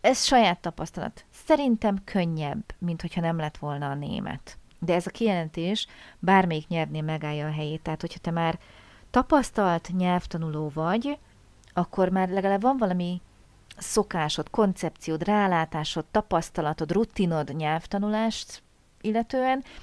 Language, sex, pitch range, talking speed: Hungarian, female, 160-195 Hz, 120 wpm